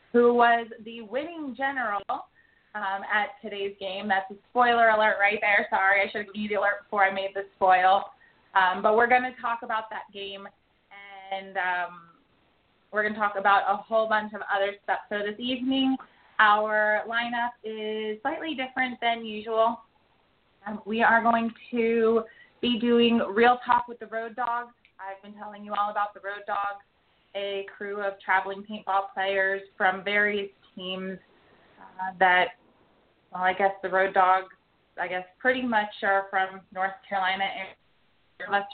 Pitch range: 195-225 Hz